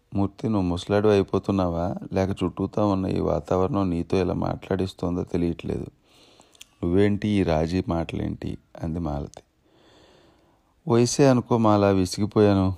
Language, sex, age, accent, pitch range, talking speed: Telugu, male, 30-49, native, 90-105 Hz, 105 wpm